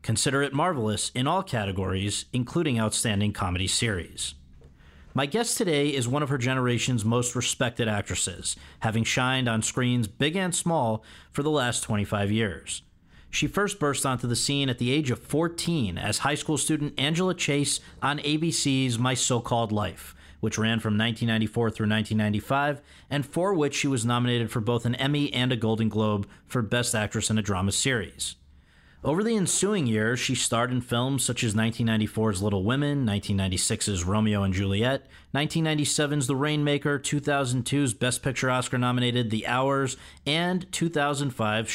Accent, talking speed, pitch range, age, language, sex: American, 160 wpm, 110-145 Hz, 40-59, English, male